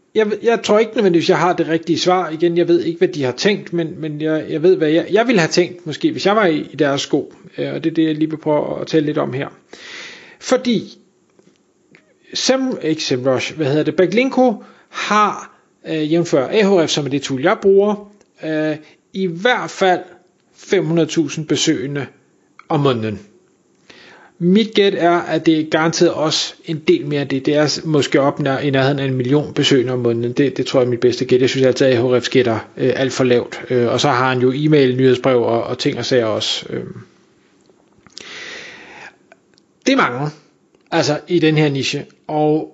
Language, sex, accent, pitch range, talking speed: Danish, male, native, 140-185 Hz, 200 wpm